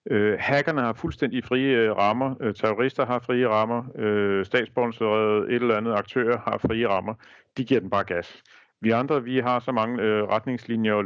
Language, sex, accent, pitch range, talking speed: Danish, male, native, 110-130 Hz, 165 wpm